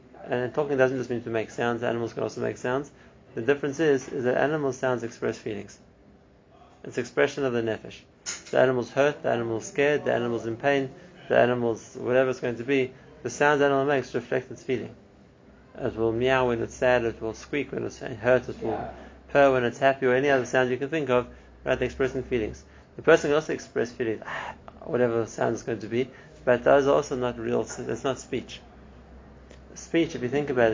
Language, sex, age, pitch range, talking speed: English, male, 30-49, 120-140 Hz, 210 wpm